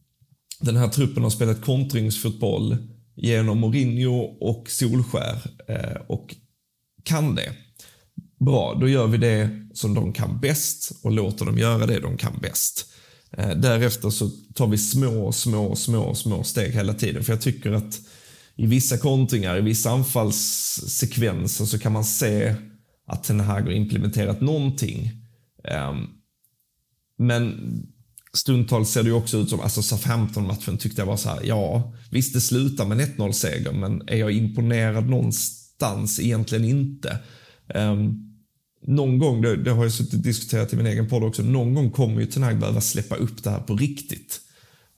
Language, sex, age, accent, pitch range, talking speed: Swedish, male, 30-49, native, 110-125 Hz, 155 wpm